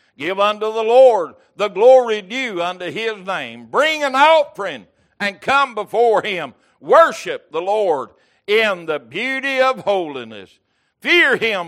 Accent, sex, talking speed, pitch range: American, male, 140 wpm, 190-245 Hz